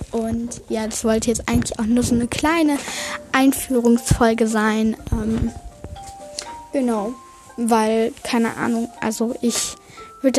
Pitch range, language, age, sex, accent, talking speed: 230-280 Hz, German, 10-29, female, German, 120 wpm